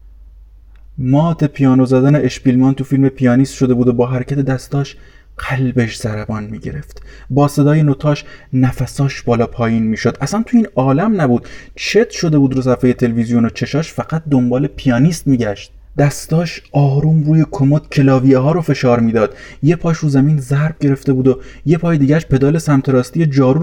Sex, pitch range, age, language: male, 115-140 Hz, 30-49, Persian